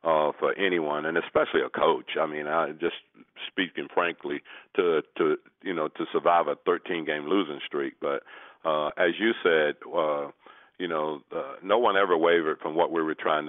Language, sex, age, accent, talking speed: English, male, 50-69, American, 180 wpm